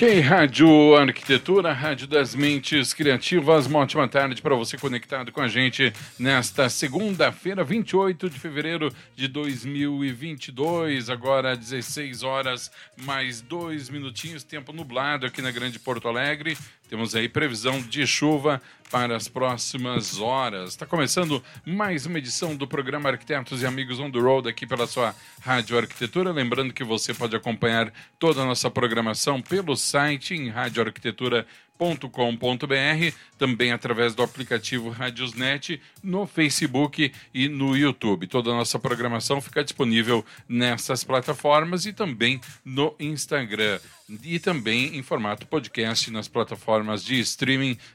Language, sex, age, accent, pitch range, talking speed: Portuguese, male, 40-59, Brazilian, 120-150 Hz, 135 wpm